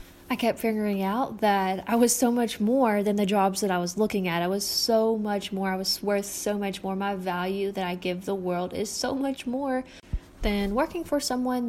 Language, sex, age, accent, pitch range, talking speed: English, female, 10-29, American, 180-215 Hz, 225 wpm